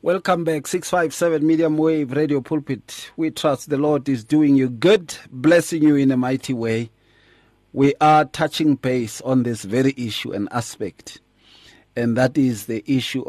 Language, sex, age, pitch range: English, male, 40-59, 125-155 Hz